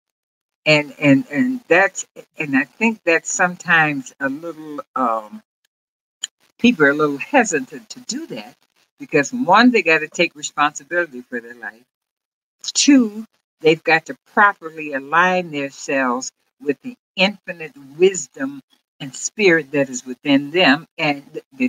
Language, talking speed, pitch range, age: English, 135 wpm, 150-220 Hz, 60-79